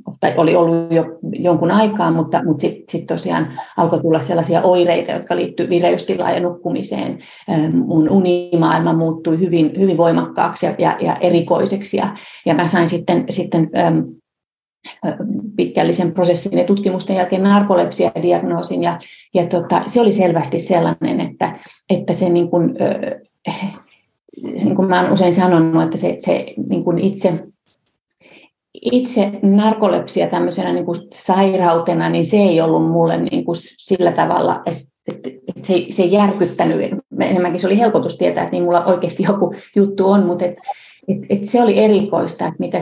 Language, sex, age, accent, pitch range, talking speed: Finnish, female, 30-49, native, 170-195 Hz, 145 wpm